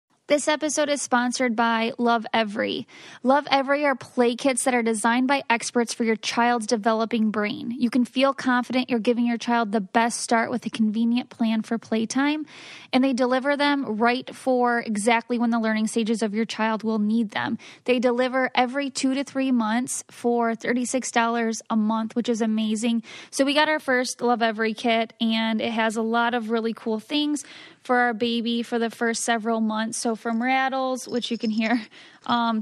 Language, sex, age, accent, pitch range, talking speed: English, female, 10-29, American, 225-255 Hz, 190 wpm